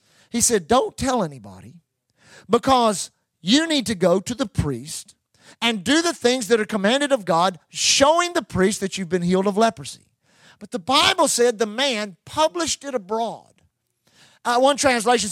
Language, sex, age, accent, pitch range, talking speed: English, male, 40-59, American, 185-270 Hz, 170 wpm